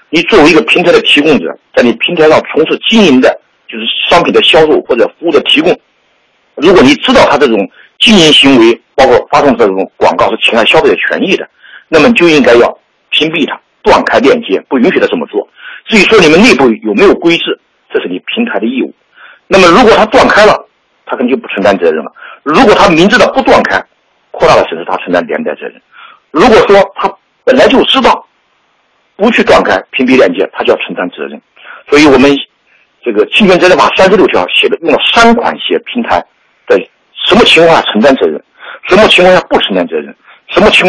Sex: male